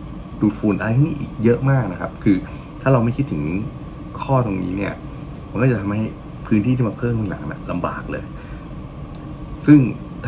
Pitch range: 95-135 Hz